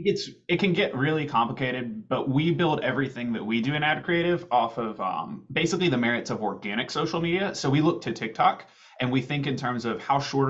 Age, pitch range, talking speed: 20-39, 115-155 Hz, 225 wpm